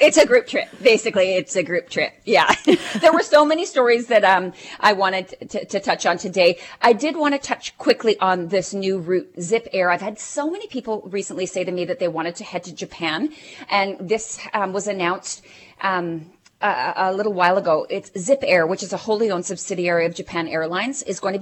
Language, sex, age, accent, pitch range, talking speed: English, female, 30-49, American, 175-215 Hz, 220 wpm